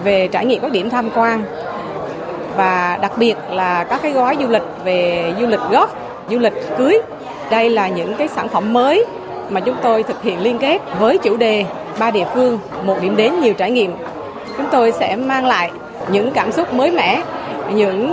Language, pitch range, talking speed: Vietnamese, 200-250 Hz, 200 wpm